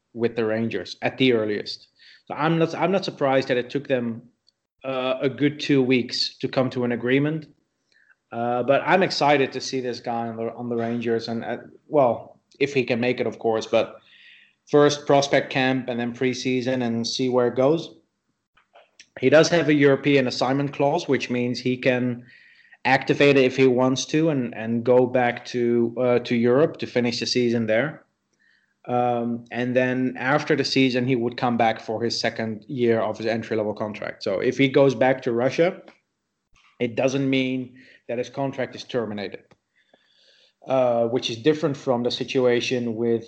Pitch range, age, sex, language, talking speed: 115-130 Hz, 30-49, male, English, 185 wpm